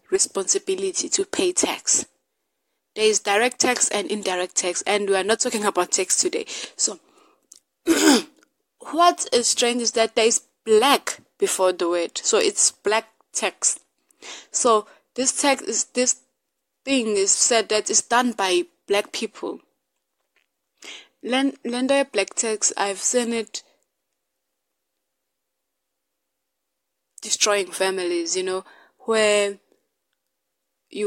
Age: 20-39